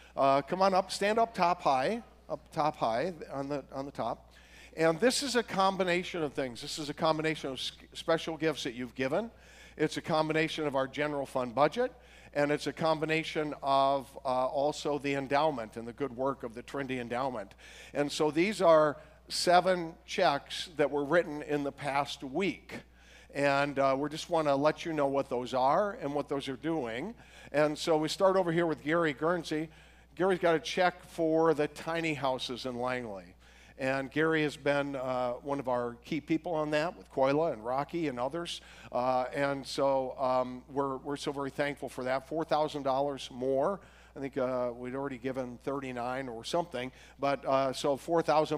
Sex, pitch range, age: male, 135-160 Hz, 50-69